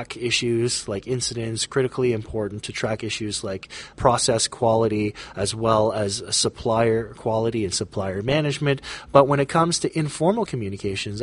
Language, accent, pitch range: English, American, 105-135 Hz